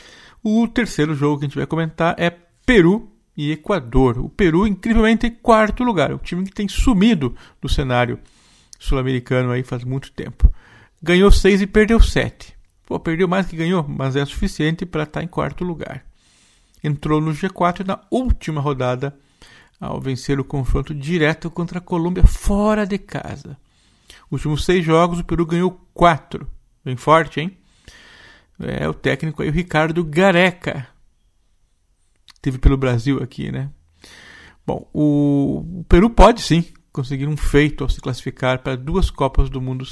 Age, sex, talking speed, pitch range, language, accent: 50-69, male, 155 wpm, 130-180 Hz, Portuguese, Brazilian